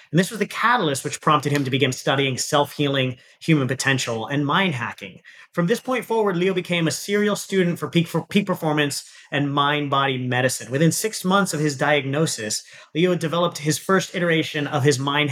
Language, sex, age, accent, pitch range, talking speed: English, male, 30-49, American, 135-185 Hz, 190 wpm